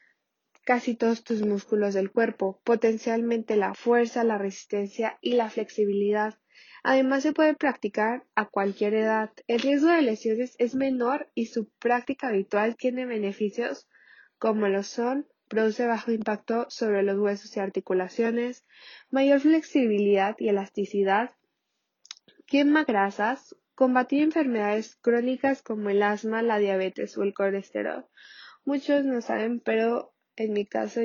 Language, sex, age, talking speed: Spanish, female, 10-29, 130 wpm